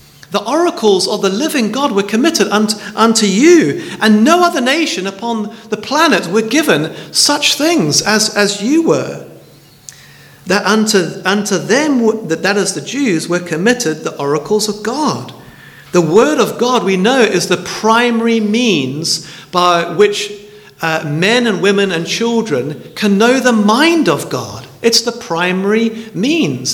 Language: English